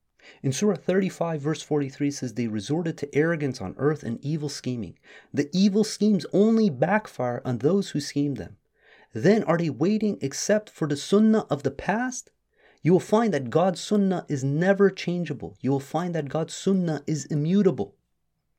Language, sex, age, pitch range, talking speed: English, male, 30-49, 135-180 Hz, 170 wpm